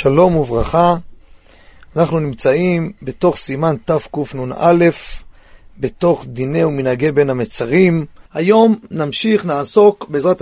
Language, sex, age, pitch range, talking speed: Hebrew, male, 40-59, 150-215 Hz, 90 wpm